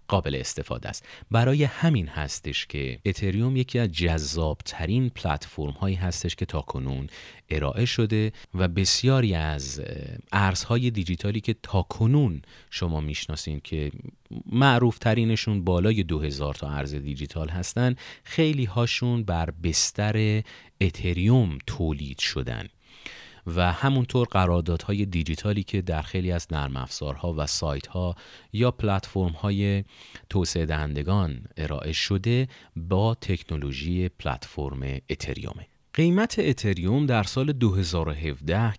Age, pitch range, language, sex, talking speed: 30-49, 80-110 Hz, Persian, male, 110 wpm